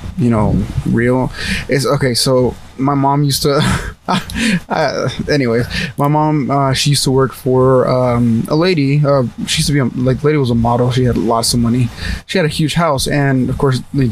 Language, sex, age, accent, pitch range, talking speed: English, male, 20-39, American, 125-145 Hz, 205 wpm